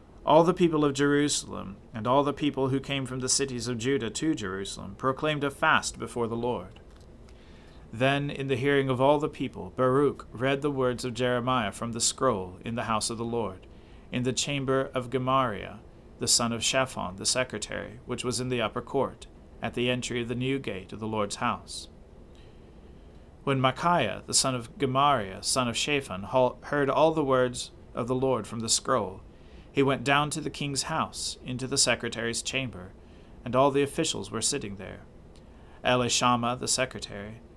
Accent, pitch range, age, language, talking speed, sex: American, 110-135 Hz, 40-59, English, 185 wpm, male